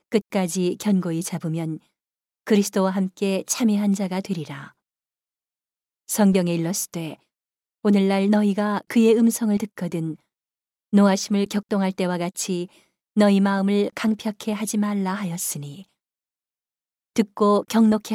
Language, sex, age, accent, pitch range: Korean, female, 40-59, native, 180-215 Hz